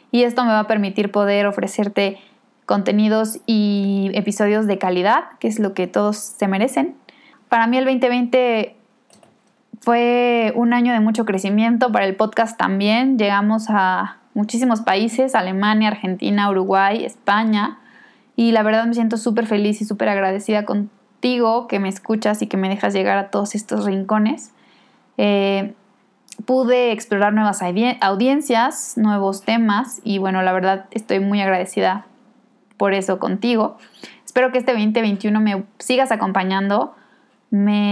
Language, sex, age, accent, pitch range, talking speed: Spanish, female, 20-39, Mexican, 205-240 Hz, 140 wpm